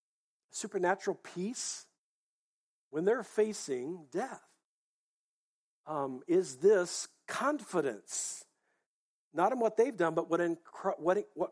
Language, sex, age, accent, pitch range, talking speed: English, male, 50-69, American, 140-195 Hz, 105 wpm